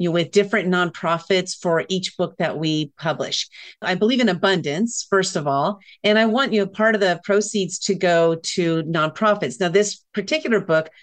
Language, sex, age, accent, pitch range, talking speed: English, female, 40-59, American, 165-205 Hz, 175 wpm